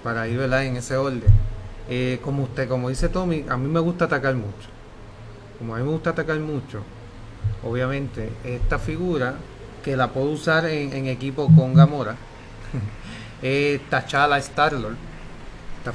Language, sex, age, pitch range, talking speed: Spanish, male, 30-49, 110-145 Hz, 155 wpm